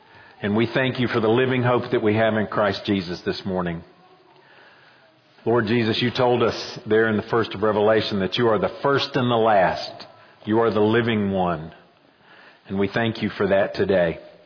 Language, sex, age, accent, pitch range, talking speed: English, male, 50-69, American, 110-130 Hz, 195 wpm